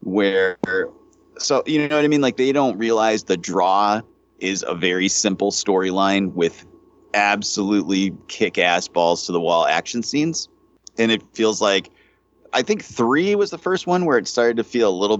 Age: 30-49